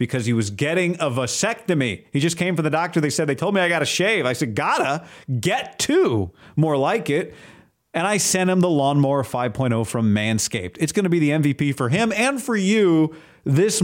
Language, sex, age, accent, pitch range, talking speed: English, male, 40-59, American, 130-175 Hz, 215 wpm